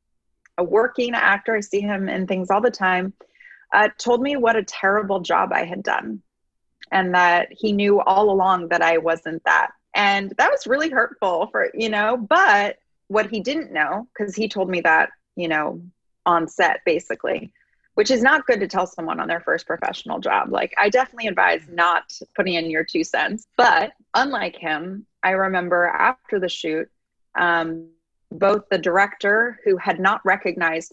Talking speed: 180 wpm